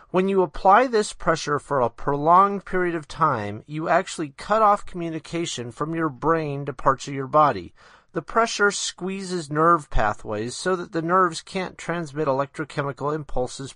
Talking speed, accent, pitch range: 160 wpm, American, 135-180 Hz